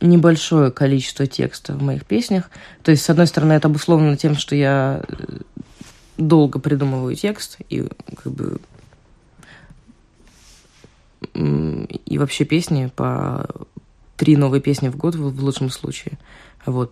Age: 20-39